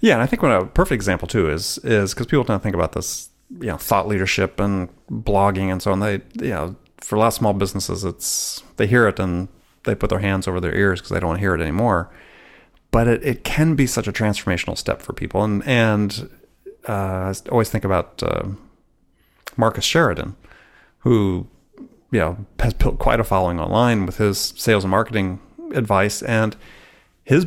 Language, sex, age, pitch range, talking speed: English, male, 30-49, 95-125 Hz, 200 wpm